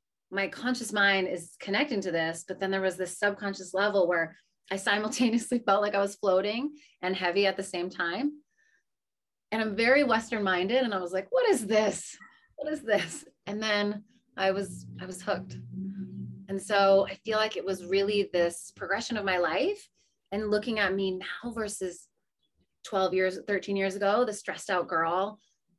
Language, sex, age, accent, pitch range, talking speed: English, female, 30-49, American, 180-210 Hz, 180 wpm